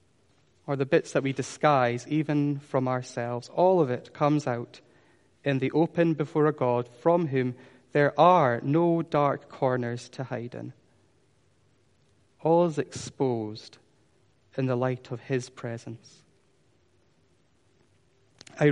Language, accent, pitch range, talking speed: English, British, 125-150 Hz, 130 wpm